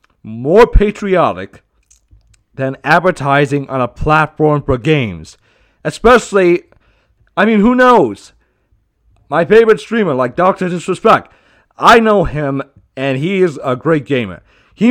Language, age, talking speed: English, 40-59, 120 wpm